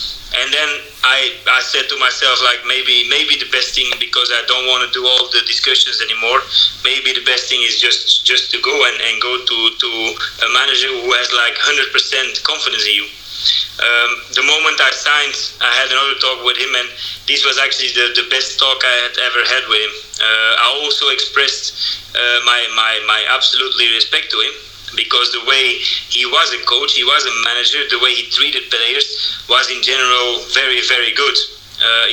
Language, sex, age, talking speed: English, male, 30-49, 200 wpm